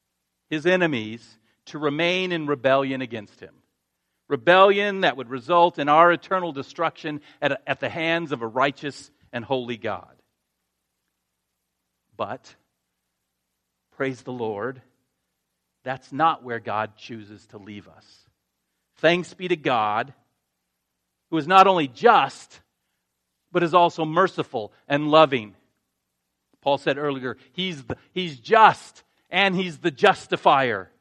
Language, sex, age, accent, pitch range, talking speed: English, male, 50-69, American, 110-180 Hz, 120 wpm